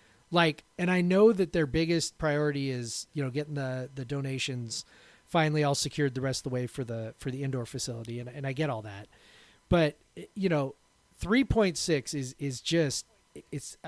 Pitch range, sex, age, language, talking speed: 135-175 Hz, male, 30-49, English, 195 wpm